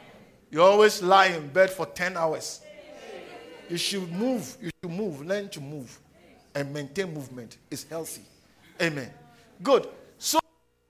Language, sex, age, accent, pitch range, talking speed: English, male, 50-69, Nigerian, 205-330 Hz, 140 wpm